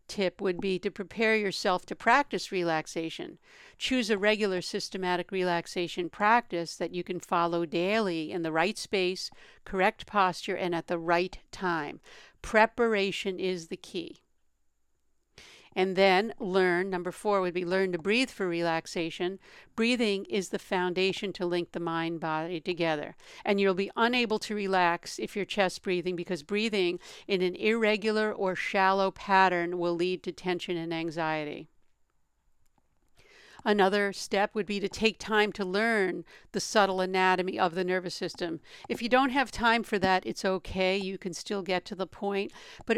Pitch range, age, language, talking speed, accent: 175-205 Hz, 50-69, English, 160 wpm, American